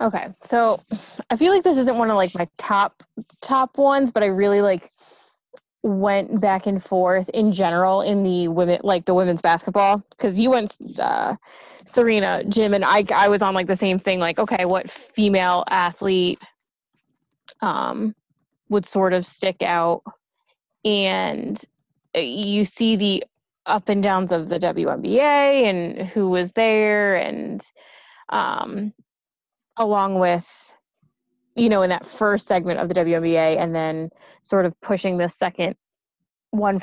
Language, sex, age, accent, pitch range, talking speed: English, female, 20-39, American, 185-235 Hz, 150 wpm